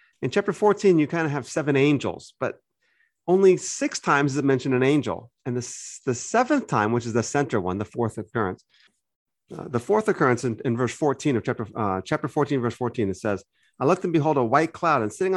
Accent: American